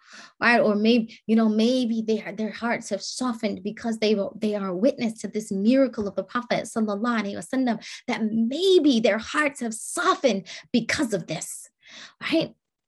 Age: 20-39